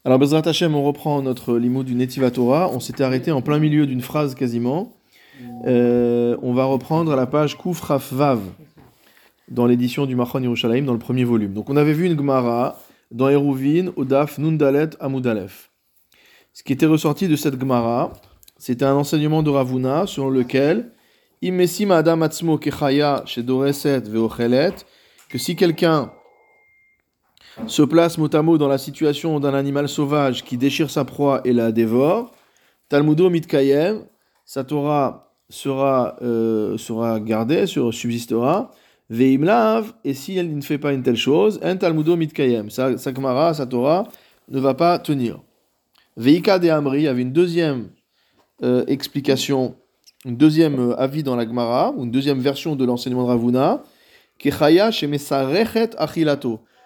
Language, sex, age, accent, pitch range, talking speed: French, male, 20-39, French, 125-155 Hz, 140 wpm